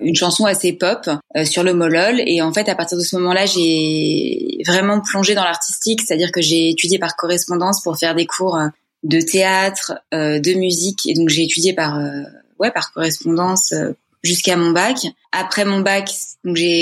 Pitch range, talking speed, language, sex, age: 170-210 Hz, 190 wpm, French, female, 20-39